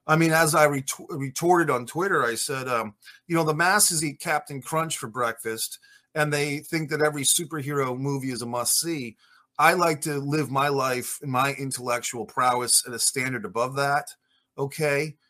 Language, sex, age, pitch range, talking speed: English, male, 30-49, 125-155 Hz, 180 wpm